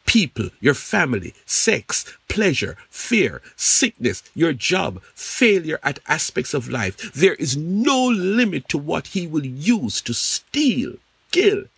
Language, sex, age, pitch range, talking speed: English, male, 60-79, 175-245 Hz, 135 wpm